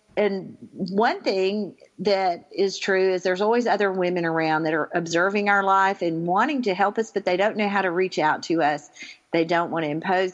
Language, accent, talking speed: English, American, 215 wpm